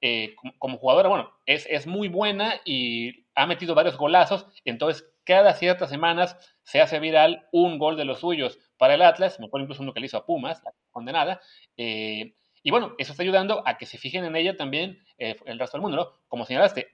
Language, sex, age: Spanish, male, 30-49